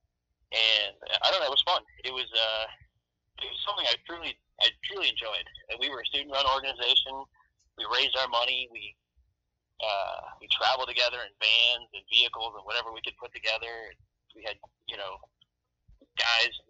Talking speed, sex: 175 wpm, male